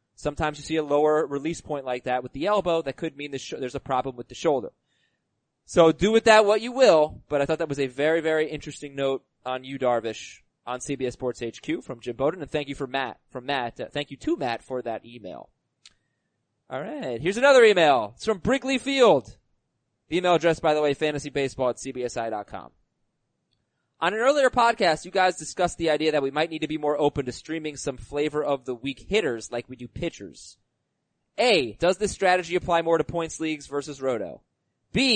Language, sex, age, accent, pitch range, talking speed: English, male, 20-39, American, 135-175 Hz, 205 wpm